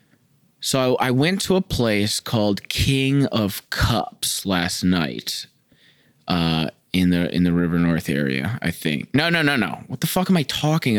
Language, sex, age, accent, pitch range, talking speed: English, male, 20-39, American, 95-140 Hz, 175 wpm